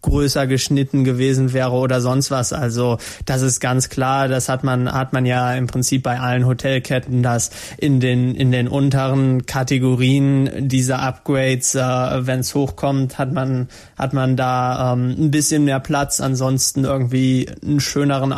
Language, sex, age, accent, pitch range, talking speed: German, male, 20-39, German, 130-140 Hz, 155 wpm